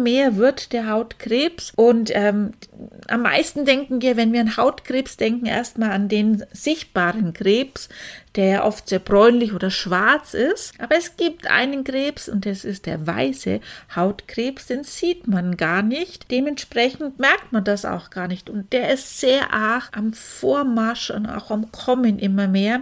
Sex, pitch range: female, 210-270 Hz